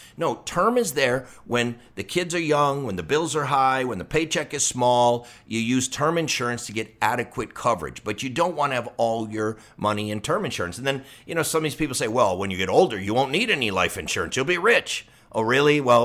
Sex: male